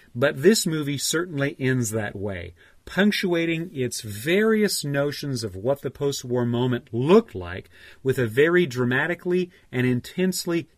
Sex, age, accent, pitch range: male, 40-59, American, 115-160 Hz